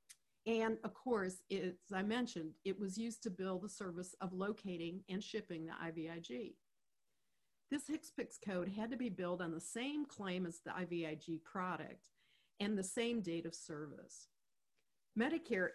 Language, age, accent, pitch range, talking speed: English, 50-69, American, 175-220 Hz, 155 wpm